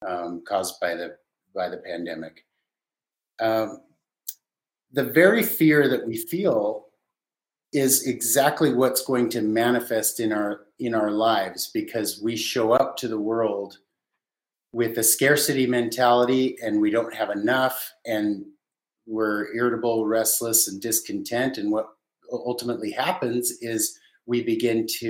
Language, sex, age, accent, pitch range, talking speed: English, male, 50-69, American, 110-135 Hz, 130 wpm